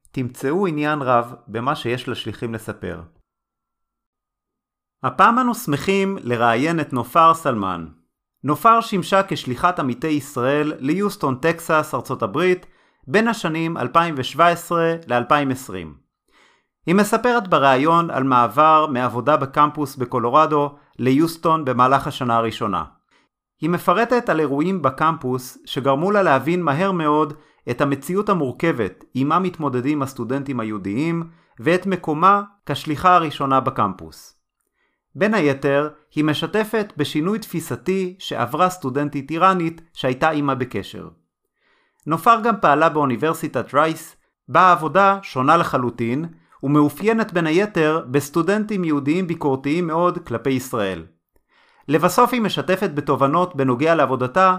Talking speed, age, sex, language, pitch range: 105 wpm, 30-49, male, Hebrew, 130-170 Hz